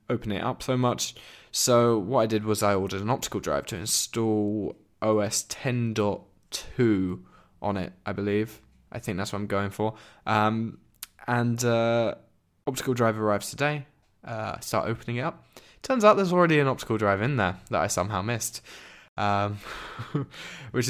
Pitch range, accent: 105-135 Hz, British